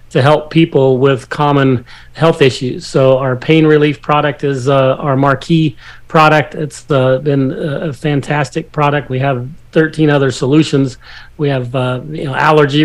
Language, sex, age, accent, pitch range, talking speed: English, male, 40-59, American, 135-160 Hz, 150 wpm